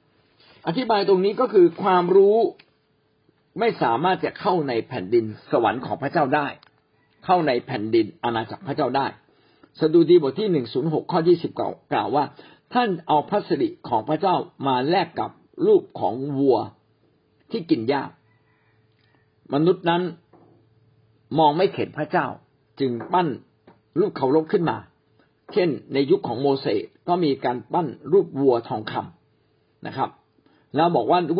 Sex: male